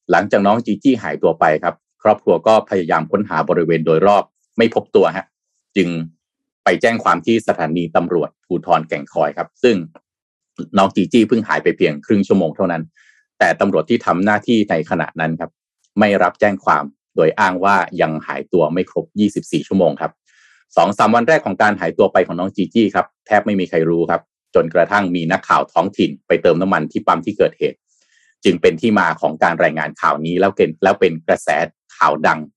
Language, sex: Thai, male